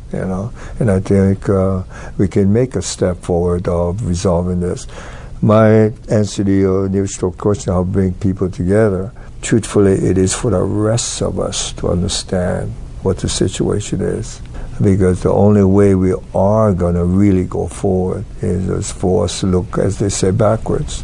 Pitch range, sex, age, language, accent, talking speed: 90-105 Hz, male, 60-79, English, American, 170 wpm